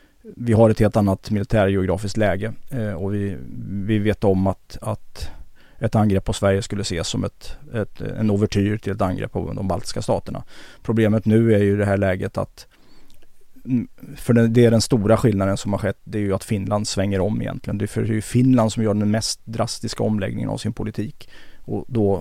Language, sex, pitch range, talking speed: English, male, 100-115 Hz, 195 wpm